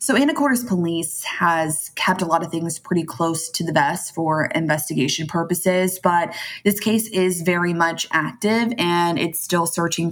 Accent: American